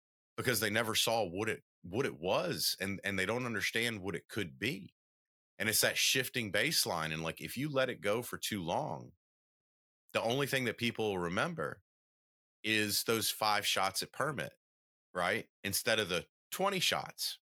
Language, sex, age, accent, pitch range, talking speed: English, male, 30-49, American, 80-115 Hz, 175 wpm